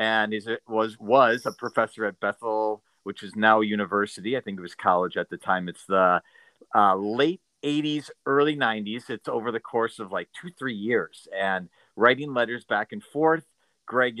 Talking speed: 185 wpm